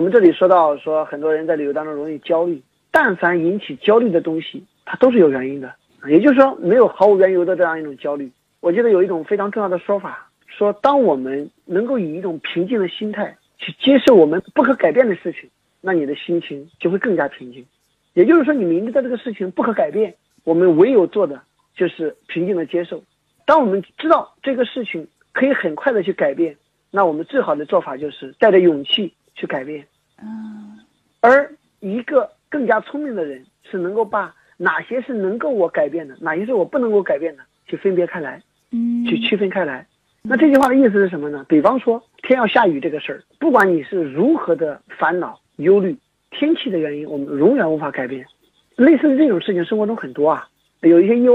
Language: Chinese